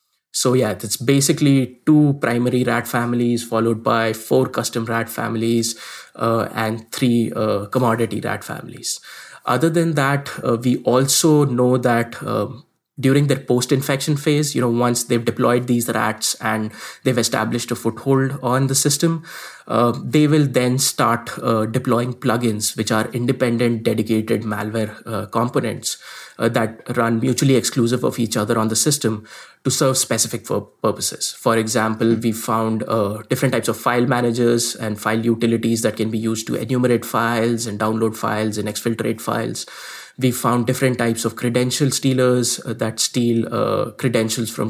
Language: English